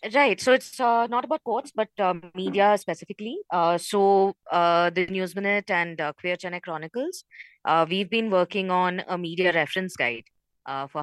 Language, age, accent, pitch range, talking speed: English, 20-39, Indian, 155-195 Hz, 180 wpm